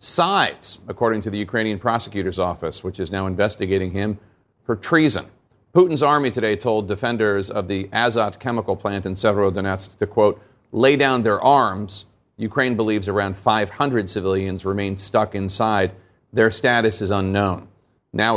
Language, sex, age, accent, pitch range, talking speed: English, male, 40-59, American, 100-130 Hz, 145 wpm